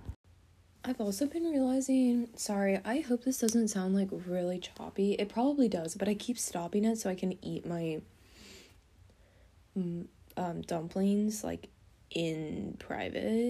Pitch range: 160-210 Hz